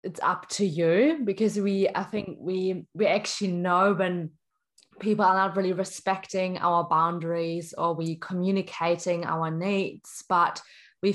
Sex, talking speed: female, 145 wpm